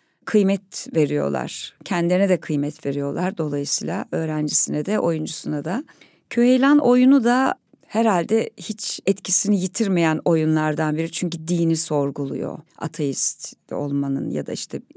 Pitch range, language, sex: 170-225 Hz, Turkish, female